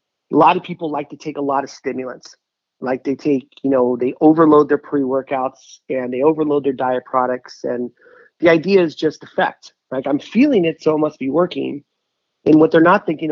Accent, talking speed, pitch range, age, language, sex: American, 205 wpm, 130-165 Hz, 30-49, English, male